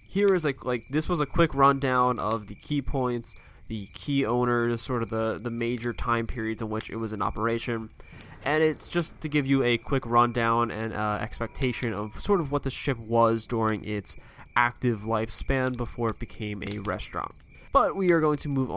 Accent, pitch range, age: American, 110-140 Hz, 20-39